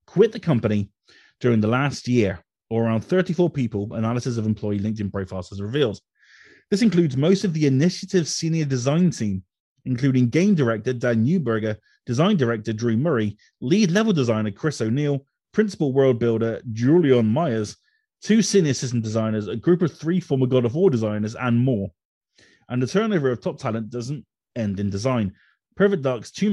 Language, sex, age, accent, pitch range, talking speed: English, male, 30-49, British, 110-170 Hz, 165 wpm